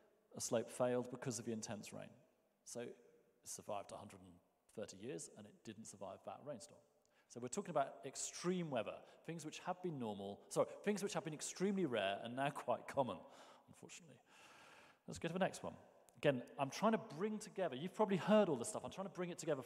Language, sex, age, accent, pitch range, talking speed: English, male, 40-59, British, 115-175 Hz, 200 wpm